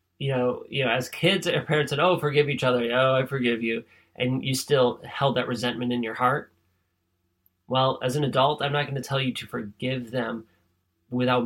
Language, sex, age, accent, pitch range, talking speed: English, male, 30-49, American, 120-150 Hz, 210 wpm